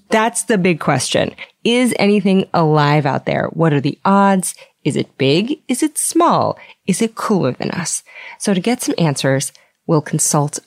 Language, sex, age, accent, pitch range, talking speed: English, female, 30-49, American, 155-200 Hz, 175 wpm